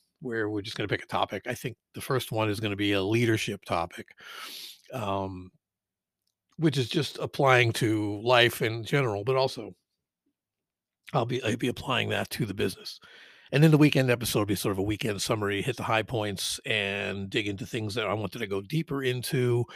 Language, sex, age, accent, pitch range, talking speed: English, male, 50-69, American, 105-135 Hz, 200 wpm